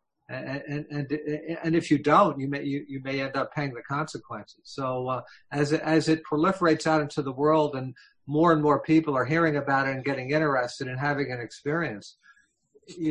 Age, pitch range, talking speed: 50-69, 135-155 Hz, 200 wpm